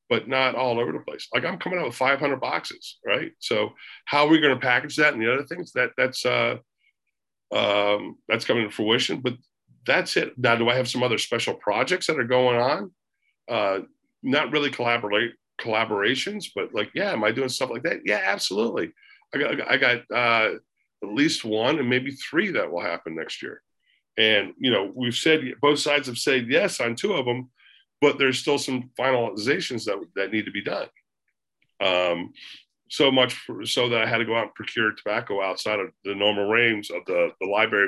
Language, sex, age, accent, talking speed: English, male, 50-69, American, 205 wpm